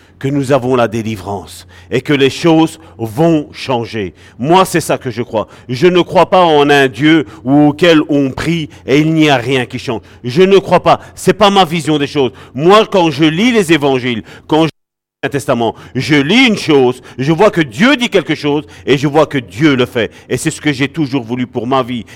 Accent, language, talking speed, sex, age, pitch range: French, French, 225 wpm, male, 50-69, 120-160 Hz